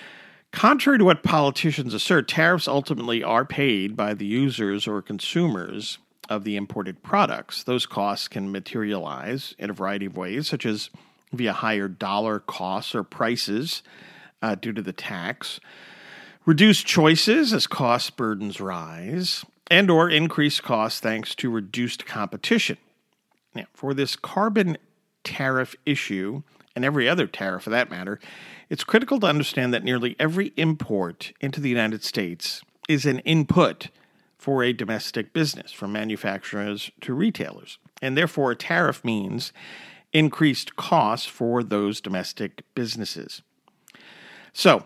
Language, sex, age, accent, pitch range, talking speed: English, male, 50-69, American, 105-160 Hz, 135 wpm